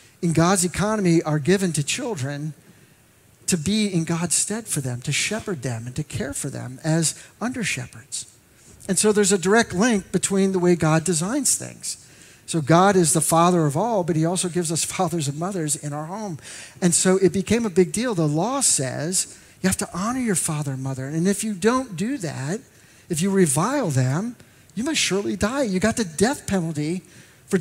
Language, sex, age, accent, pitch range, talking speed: English, male, 50-69, American, 140-185 Hz, 200 wpm